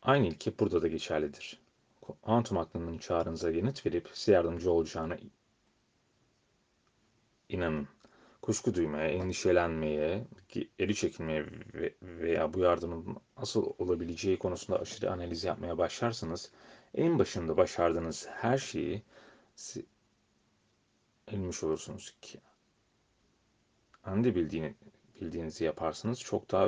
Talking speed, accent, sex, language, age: 100 wpm, native, male, Turkish, 30-49